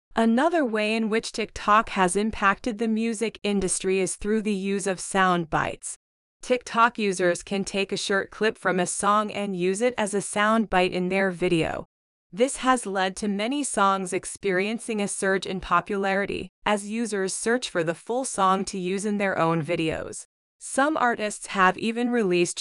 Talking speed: 175 wpm